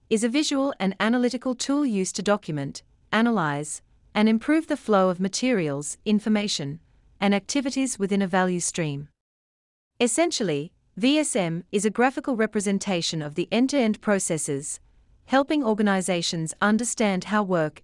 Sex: female